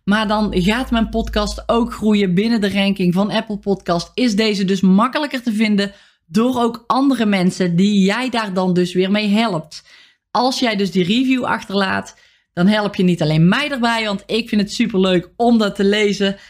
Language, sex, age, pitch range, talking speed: Dutch, female, 20-39, 185-225 Hz, 195 wpm